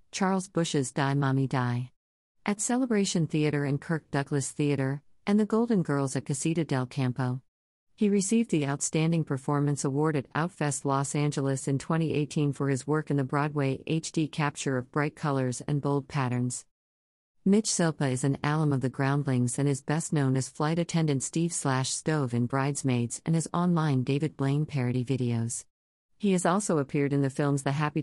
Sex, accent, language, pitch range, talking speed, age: female, American, English, 130-170 Hz, 175 wpm, 50-69